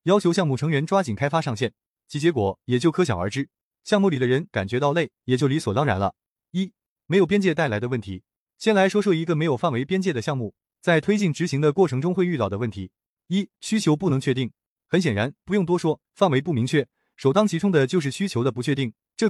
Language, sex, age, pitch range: Chinese, male, 30-49, 125-185 Hz